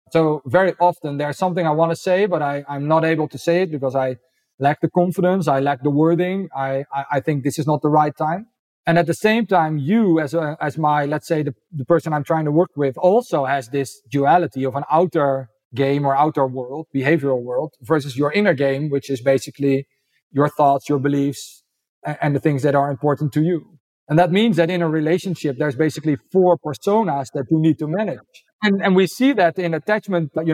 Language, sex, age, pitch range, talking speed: English, male, 40-59, 145-180 Hz, 225 wpm